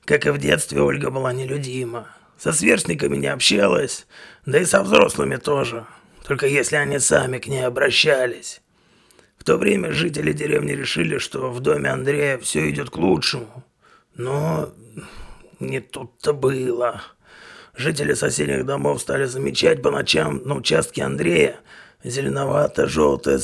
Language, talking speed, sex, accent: Russian, 135 wpm, male, native